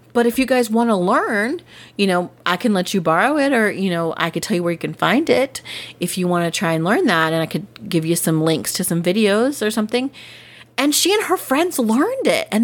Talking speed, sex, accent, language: 260 wpm, female, American, English